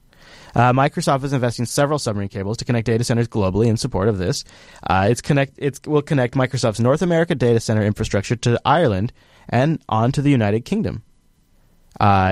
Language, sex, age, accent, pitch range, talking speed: English, male, 30-49, American, 110-140 Hz, 180 wpm